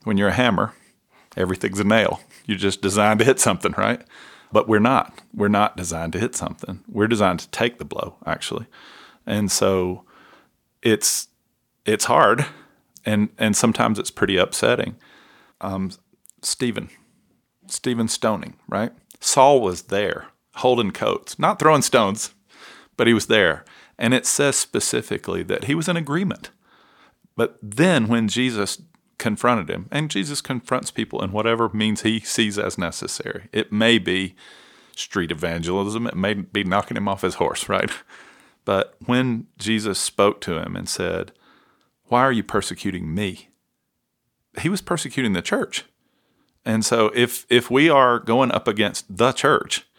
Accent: American